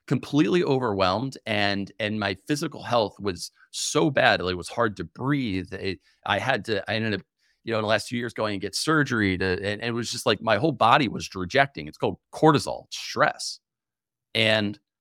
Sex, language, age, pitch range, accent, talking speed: male, English, 30-49, 100-130 Hz, American, 190 wpm